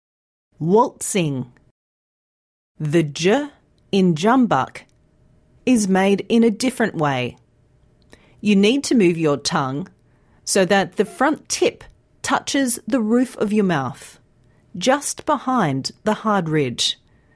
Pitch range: 160-230 Hz